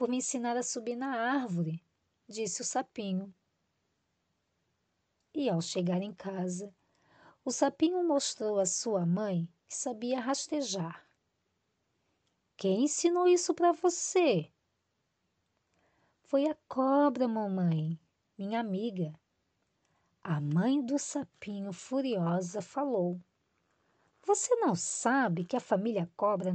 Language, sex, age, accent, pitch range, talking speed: Portuguese, female, 20-39, Brazilian, 180-280 Hz, 110 wpm